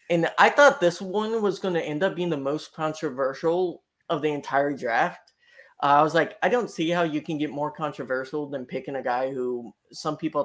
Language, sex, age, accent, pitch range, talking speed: English, male, 20-39, American, 135-165 Hz, 220 wpm